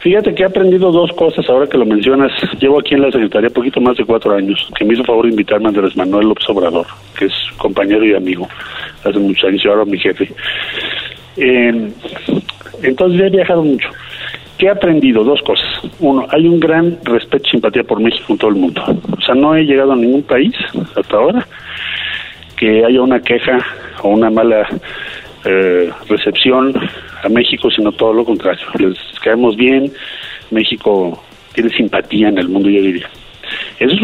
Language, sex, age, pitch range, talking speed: Spanish, male, 40-59, 110-160 Hz, 185 wpm